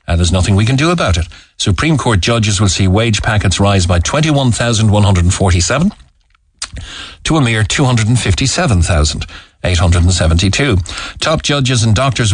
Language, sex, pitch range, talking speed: English, male, 85-105 Hz, 125 wpm